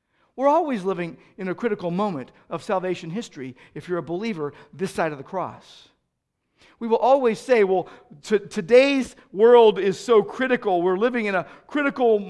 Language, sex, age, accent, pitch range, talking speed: English, male, 50-69, American, 160-225 Hz, 165 wpm